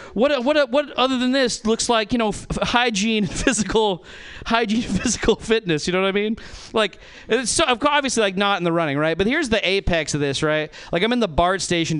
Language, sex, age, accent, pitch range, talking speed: English, male, 40-59, American, 165-245 Hz, 220 wpm